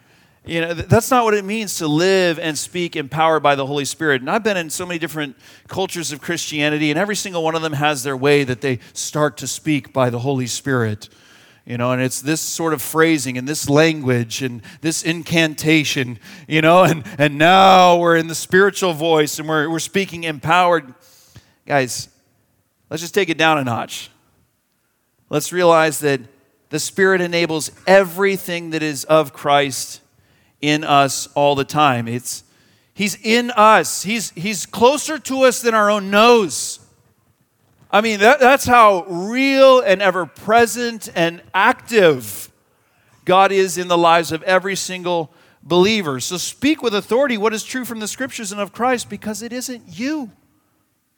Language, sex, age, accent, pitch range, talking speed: English, male, 40-59, American, 140-200 Hz, 170 wpm